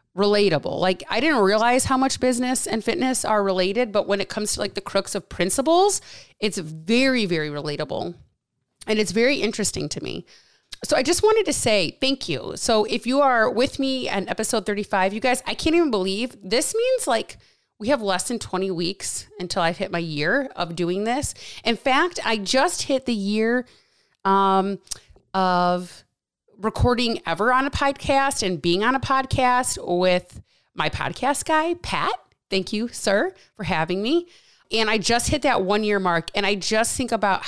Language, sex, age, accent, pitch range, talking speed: English, female, 30-49, American, 180-240 Hz, 185 wpm